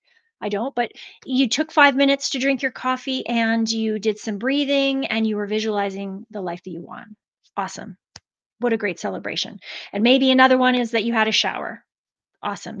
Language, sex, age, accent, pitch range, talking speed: English, female, 30-49, American, 220-280 Hz, 190 wpm